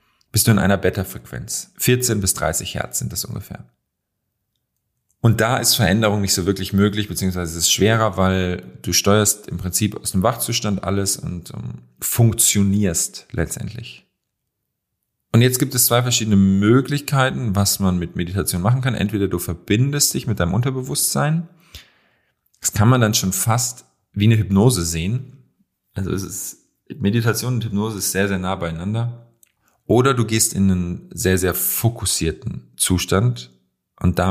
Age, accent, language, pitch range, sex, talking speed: 40-59, German, German, 95-115 Hz, male, 155 wpm